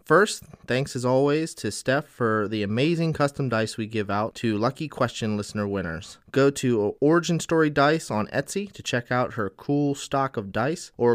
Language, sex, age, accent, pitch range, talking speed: English, male, 30-49, American, 115-140 Hz, 190 wpm